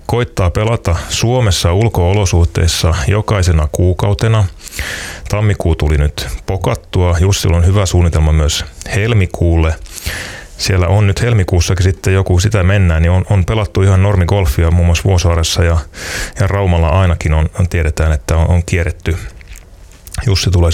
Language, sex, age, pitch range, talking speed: Finnish, male, 30-49, 80-95 Hz, 130 wpm